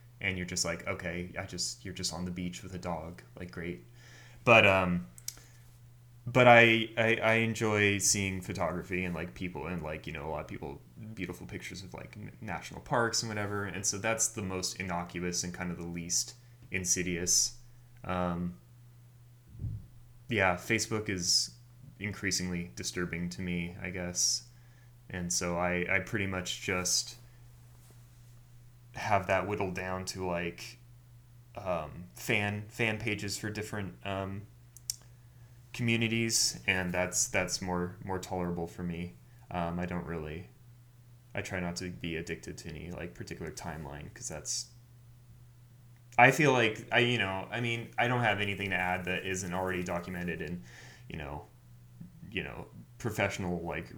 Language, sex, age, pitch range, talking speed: English, male, 20-39, 90-120 Hz, 155 wpm